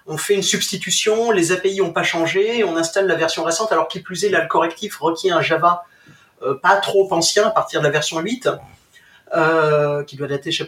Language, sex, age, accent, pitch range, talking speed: French, male, 30-49, French, 160-210 Hz, 230 wpm